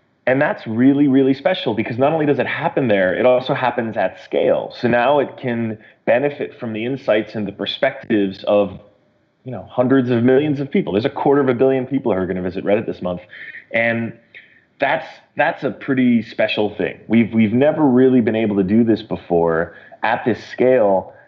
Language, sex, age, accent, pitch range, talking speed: English, male, 30-49, American, 105-130 Hz, 200 wpm